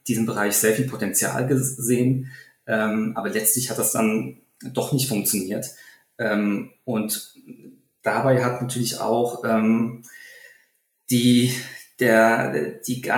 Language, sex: German, male